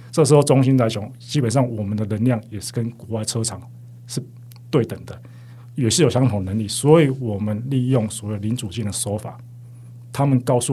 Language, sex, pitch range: Chinese, male, 110-125 Hz